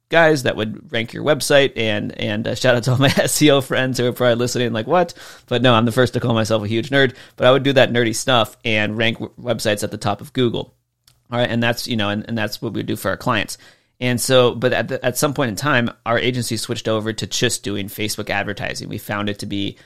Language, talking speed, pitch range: English, 270 wpm, 110-130 Hz